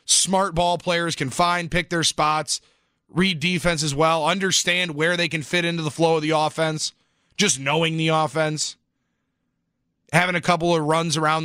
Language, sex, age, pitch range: English, male, 30-49, 150-190 Hz